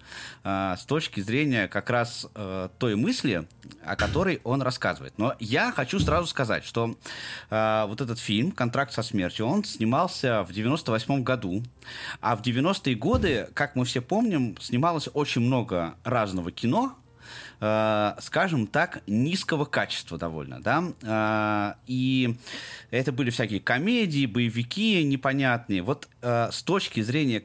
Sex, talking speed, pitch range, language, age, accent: male, 130 wpm, 105-135 Hz, Russian, 20-39, native